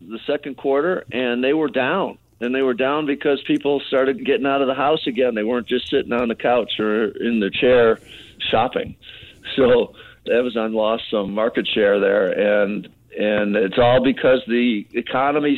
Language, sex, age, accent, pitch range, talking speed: English, male, 50-69, American, 115-135 Hz, 175 wpm